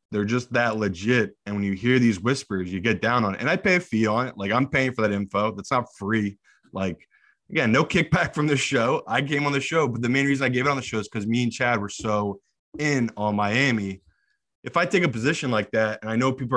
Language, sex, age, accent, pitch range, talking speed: English, male, 20-39, American, 110-140 Hz, 270 wpm